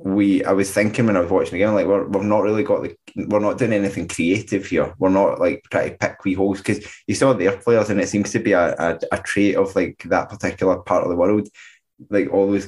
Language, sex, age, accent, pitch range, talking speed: English, male, 20-39, British, 95-105 Hz, 260 wpm